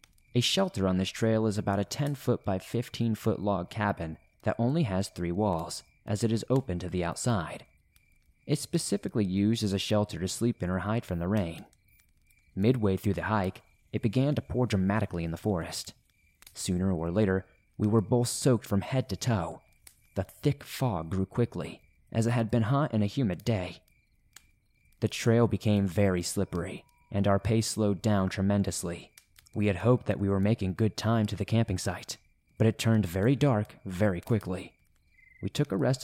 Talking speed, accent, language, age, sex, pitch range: 190 wpm, American, English, 30-49, male, 95-115 Hz